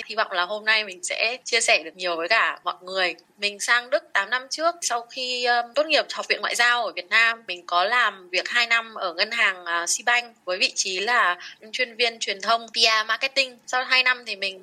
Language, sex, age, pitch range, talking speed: Vietnamese, female, 20-39, 190-250 Hz, 240 wpm